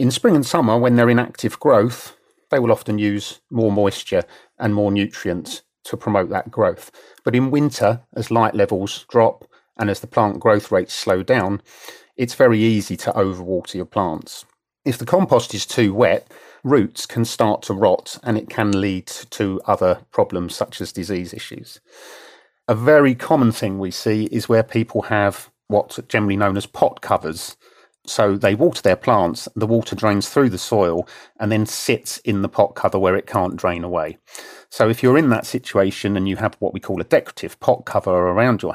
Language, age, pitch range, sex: English, 40-59, 100-120 Hz, male